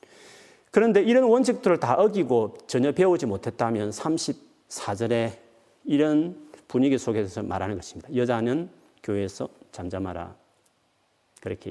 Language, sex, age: Korean, male, 40-59